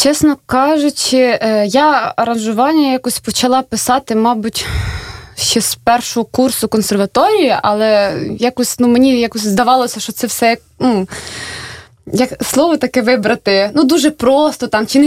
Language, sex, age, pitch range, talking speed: Russian, female, 20-39, 230-300 Hz, 130 wpm